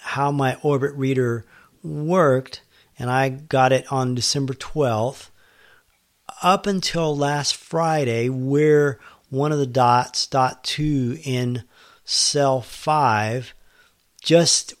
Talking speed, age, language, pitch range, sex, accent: 110 wpm, 40-59, English, 125-145 Hz, male, American